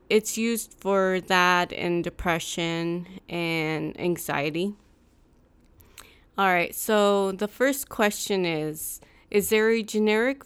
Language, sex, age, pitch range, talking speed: English, female, 20-39, 165-200 Hz, 105 wpm